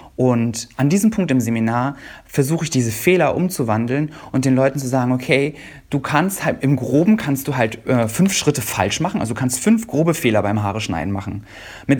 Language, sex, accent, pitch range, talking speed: German, male, German, 115-150 Hz, 205 wpm